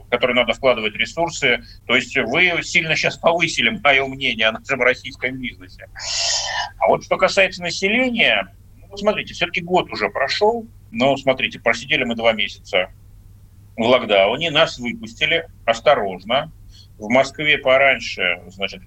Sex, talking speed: male, 135 wpm